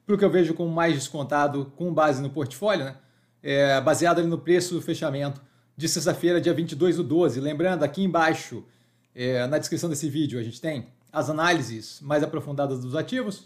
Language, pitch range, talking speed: Portuguese, 140-175 Hz, 185 wpm